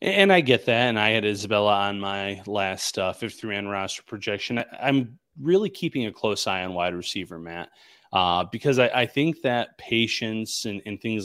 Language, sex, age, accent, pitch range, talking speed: English, male, 30-49, American, 95-115 Hz, 185 wpm